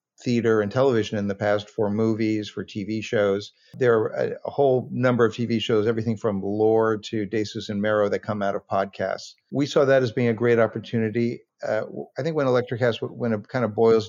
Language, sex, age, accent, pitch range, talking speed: English, male, 50-69, American, 105-120 Hz, 215 wpm